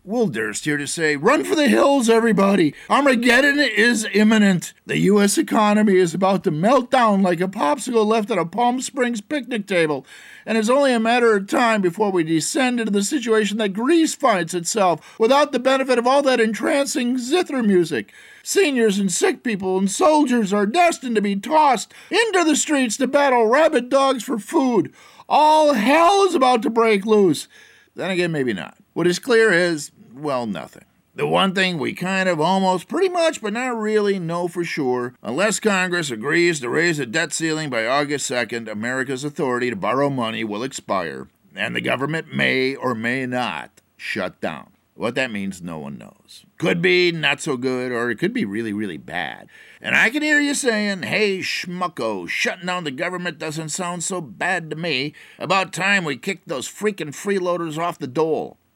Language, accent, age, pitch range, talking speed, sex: English, American, 50-69, 165-250 Hz, 185 wpm, male